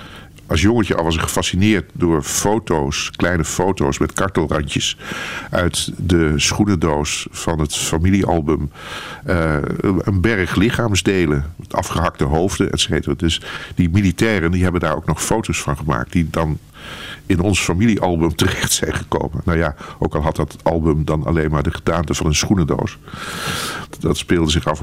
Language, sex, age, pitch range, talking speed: Dutch, male, 50-69, 75-95 Hz, 155 wpm